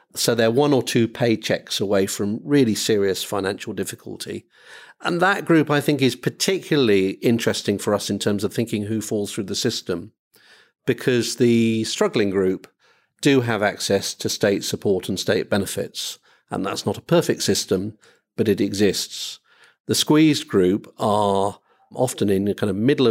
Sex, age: male, 50-69